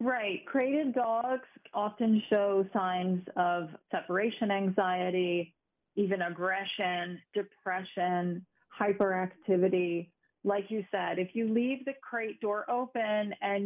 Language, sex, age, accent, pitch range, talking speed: English, female, 30-49, American, 190-215 Hz, 105 wpm